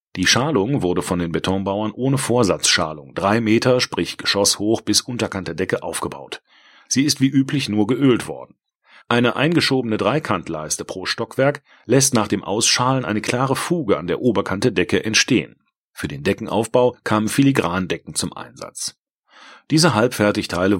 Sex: male